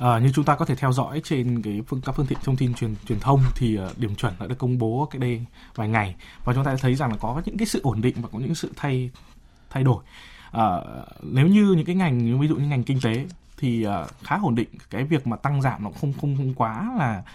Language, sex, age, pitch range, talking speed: Vietnamese, male, 20-39, 120-140 Hz, 270 wpm